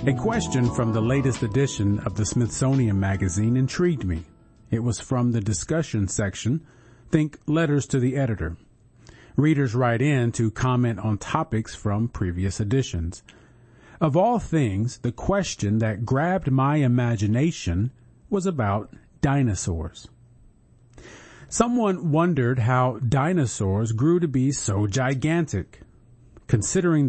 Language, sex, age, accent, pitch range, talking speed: English, male, 40-59, American, 110-145 Hz, 120 wpm